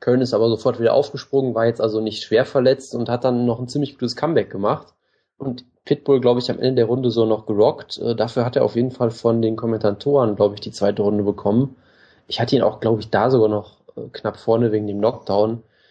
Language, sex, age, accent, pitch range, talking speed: German, male, 20-39, German, 110-130 Hz, 230 wpm